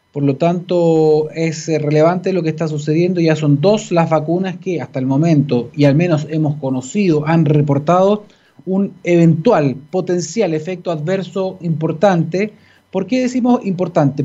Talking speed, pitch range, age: 145 wpm, 150-175 Hz, 20-39